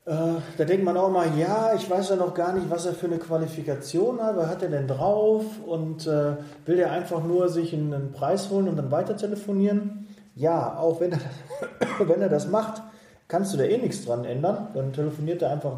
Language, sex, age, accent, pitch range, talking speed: German, male, 30-49, German, 140-175 Hz, 200 wpm